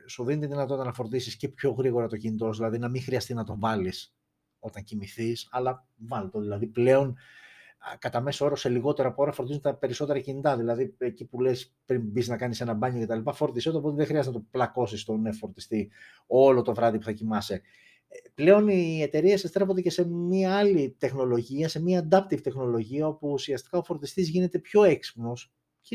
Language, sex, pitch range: Greek, male, 115-170 Hz